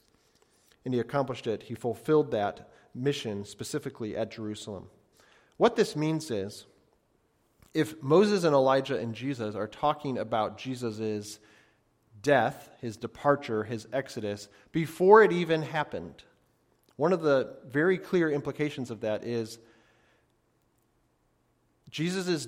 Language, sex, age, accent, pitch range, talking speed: English, male, 40-59, American, 115-155 Hz, 115 wpm